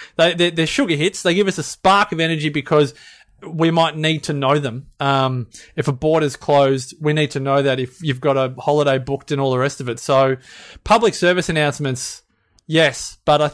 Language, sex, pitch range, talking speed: English, male, 140-170 Hz, 210 wpm